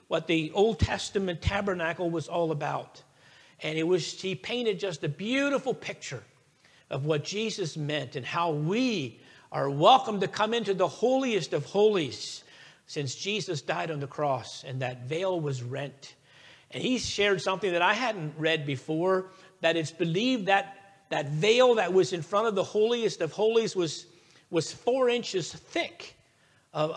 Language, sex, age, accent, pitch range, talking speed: English, male, 50-69, American, 155-215 Hz, 165 wpm